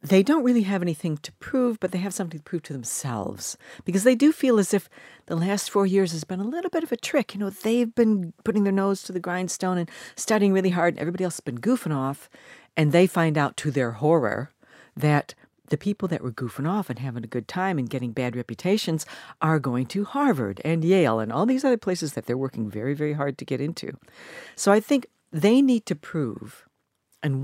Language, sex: English, female